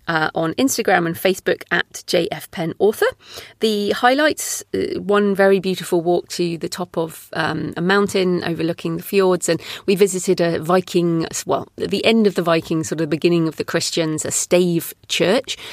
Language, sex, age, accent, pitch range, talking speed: English, female, 30-49, British, 165-195 Hz, 185 wpm